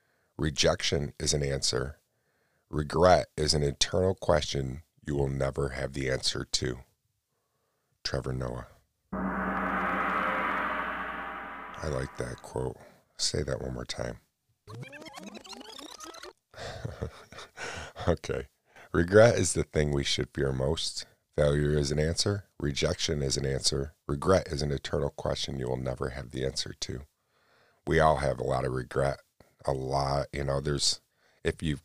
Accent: American